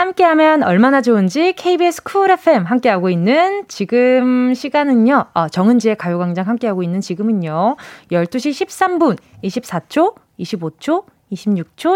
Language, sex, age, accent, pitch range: Korean, female, 20-39, native, 195-285 Hz